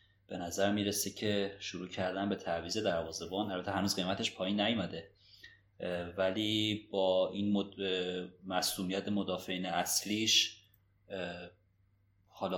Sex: male